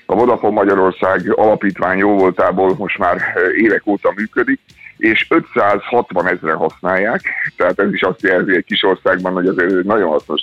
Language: Hungarian